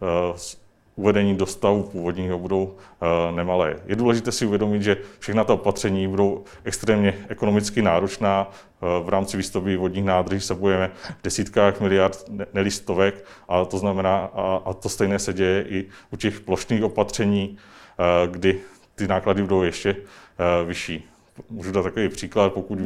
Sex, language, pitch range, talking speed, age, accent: male, Czech, 90-100 Hz, 150 wpm, 40-59, native